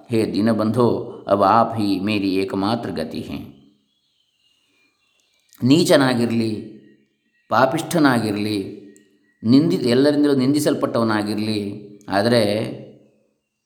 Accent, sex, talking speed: Indian, male, 95 wpm